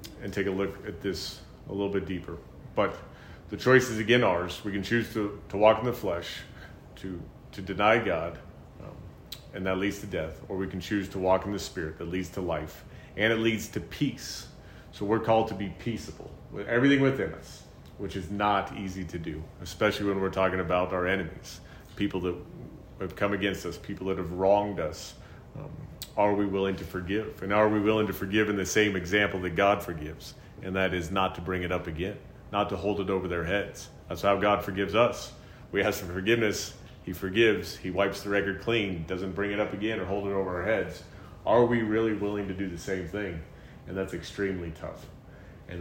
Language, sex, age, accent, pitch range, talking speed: English, male, 30-49, American, 95-105 Hz, 215 wpm